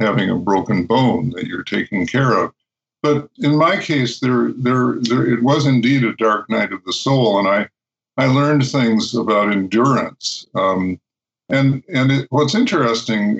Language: English